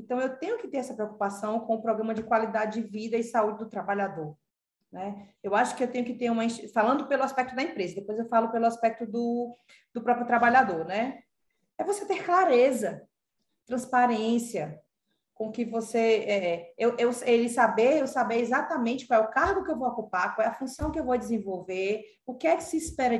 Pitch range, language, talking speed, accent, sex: 215-265 Hz, Portuguese, 205 wpm, Brazilian, female